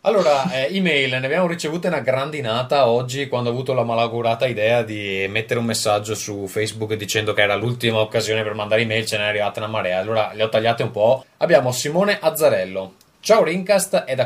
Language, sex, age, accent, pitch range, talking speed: Italian, male, 20-39, native, 105-130 Hz, 200 wpm